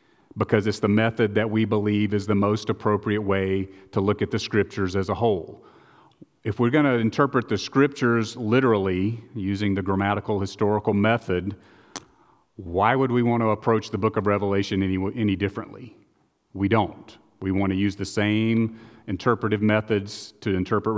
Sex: male